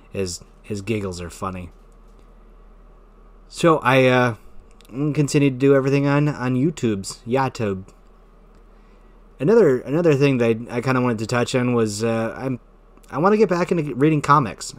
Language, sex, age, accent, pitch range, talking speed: English, male, 20-39, American, 105-130 Hz, 160 wpm